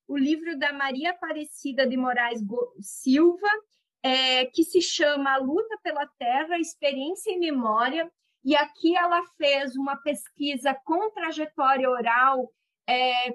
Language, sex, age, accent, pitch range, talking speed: Portuguese, female, 40-59, Brazilian, 265-330 Hz, 130 wpm